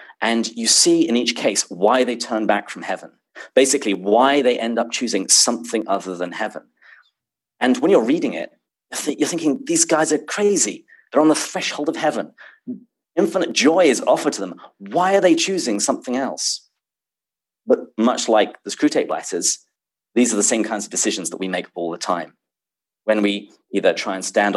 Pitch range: 100-130 Hz